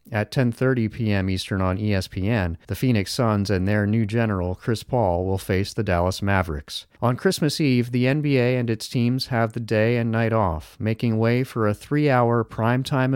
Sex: male